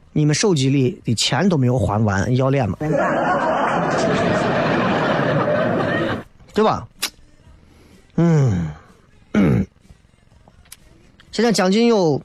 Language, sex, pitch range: Chinese, male, 115-175 Hz